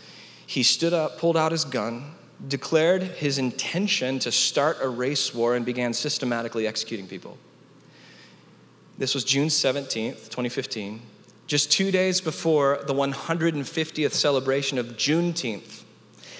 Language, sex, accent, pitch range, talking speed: English, male, American, 140-190 Hz, 125 wpm